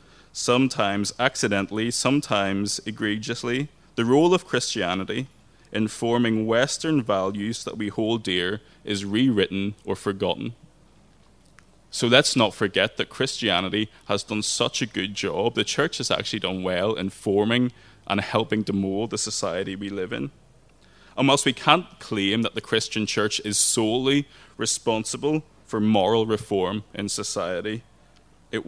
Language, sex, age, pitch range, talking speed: English, male, 20-39, 100-120 Hz, 140 wpm